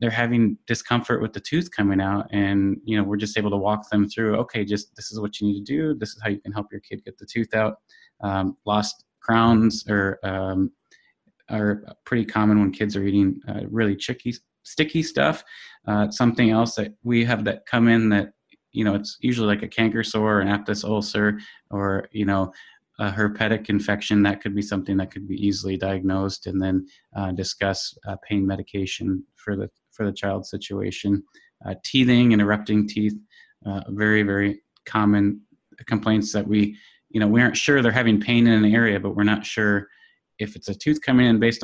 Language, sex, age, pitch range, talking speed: English, male, 20-39, 100-110 Hz, 200 wpm